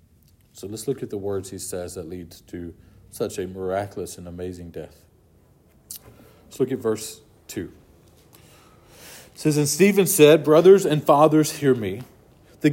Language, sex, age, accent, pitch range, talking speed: English, male, 40-59, American, 125-160 Hz, 155 wpm